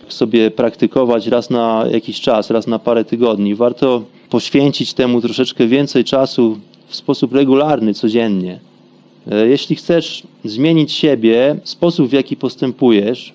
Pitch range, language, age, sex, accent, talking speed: 115-150 Hz, Polish, 30-49, male, native, 125 wpm